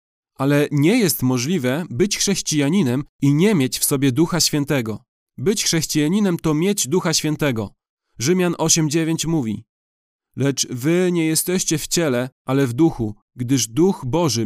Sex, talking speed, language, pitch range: male, 140 wpm, Polish, 130-170 Hz